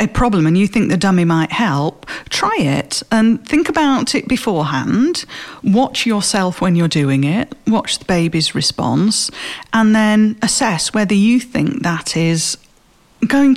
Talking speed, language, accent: 155 wpm, English, British